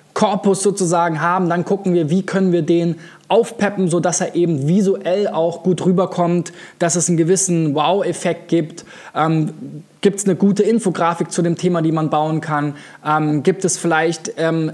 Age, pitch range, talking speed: 20-39, 160-185 Hz, 170 wpm